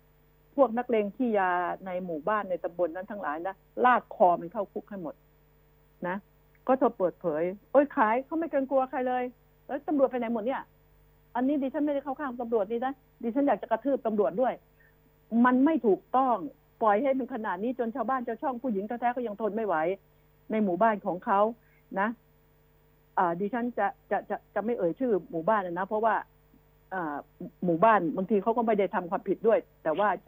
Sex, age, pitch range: female, 60-79, 205-265 Hz